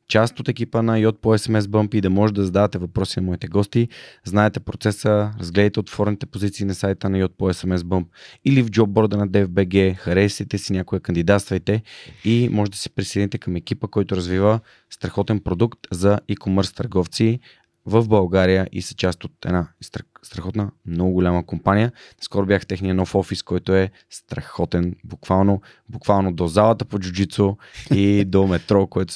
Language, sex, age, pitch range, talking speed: Bulgarian, male, 20-39, 90-105 Hz, 165 wpm